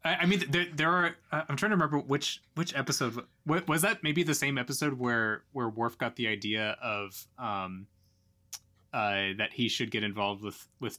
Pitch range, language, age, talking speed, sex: 110-135 Hz, English, 20-39, 185 wpm, male